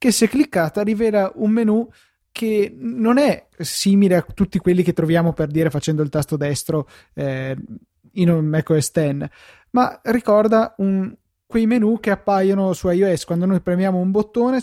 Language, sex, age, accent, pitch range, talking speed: Italian, male, 20-39, native, 155-190 Hz, 170 wpm